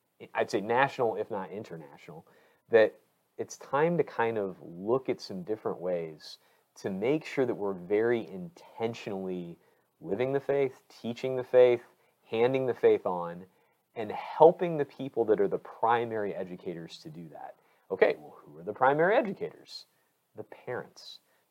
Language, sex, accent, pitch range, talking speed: English, male, American, 100-140 Hz, 155 wpm